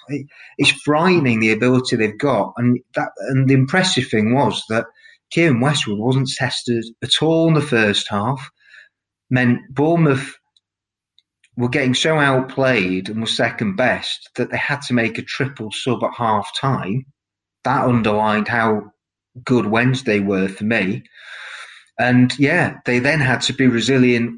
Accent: British